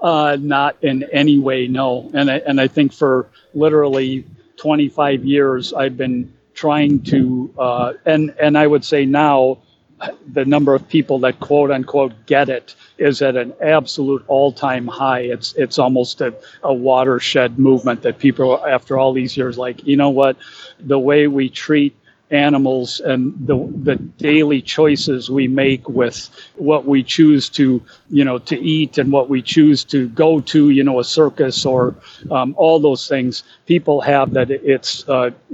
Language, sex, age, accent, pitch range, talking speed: English, male, 50-69, American, 130-150 Hz, 170 wpm